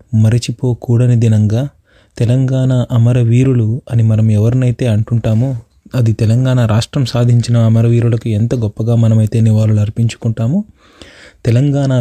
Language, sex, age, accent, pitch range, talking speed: Telugu, male, 30-49, native, 110-125 Hz, 95 wpm